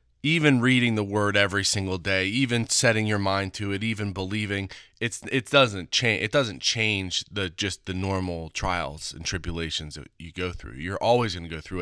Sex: male